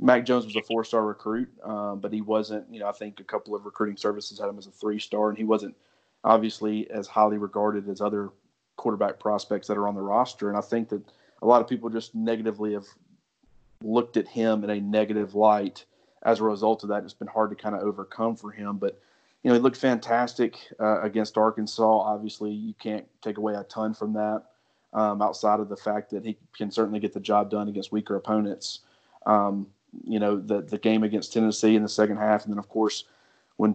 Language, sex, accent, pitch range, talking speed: English, male, American, 105-110 Hz, 215 wpm